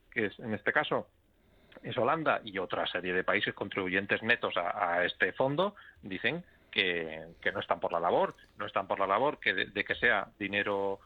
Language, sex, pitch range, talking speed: Spanish, male, 100-130 Hz, 200 wpm